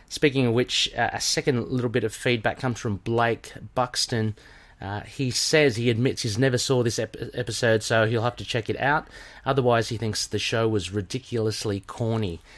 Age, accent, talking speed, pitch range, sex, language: 30-49, Australian, 190 wpm, 105-130 Hz, male, English